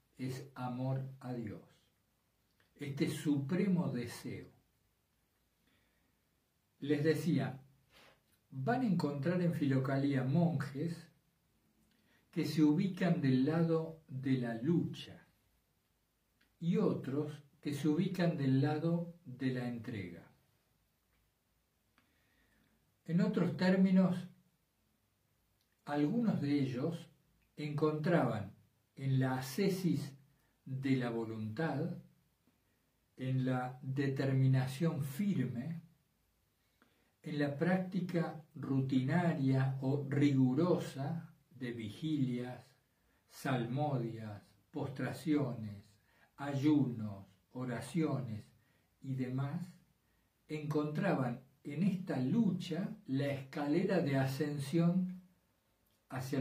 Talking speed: 80 wpm